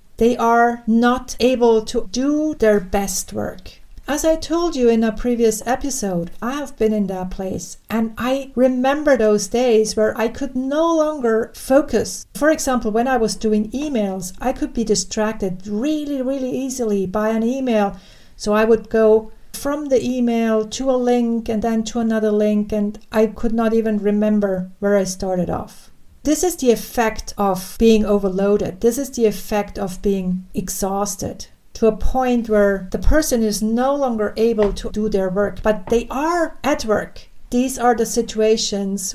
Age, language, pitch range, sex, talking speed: 50-69, English, 205-245 Hz, female, 175 wpm